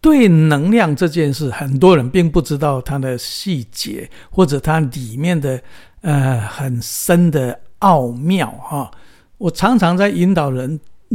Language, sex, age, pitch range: Chinese, male, 60-79, 135-180 Hz